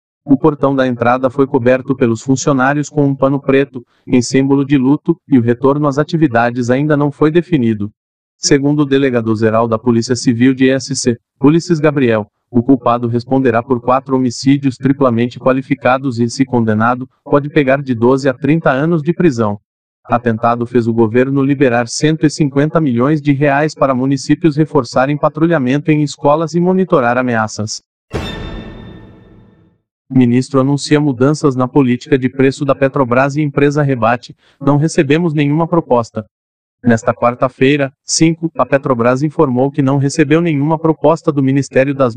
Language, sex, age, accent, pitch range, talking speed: Portuguese, male, 40-59, Brazilian, 125-150 Hz, 150 wpm